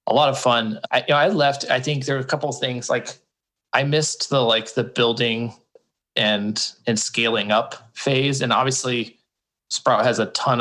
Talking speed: 200 wpm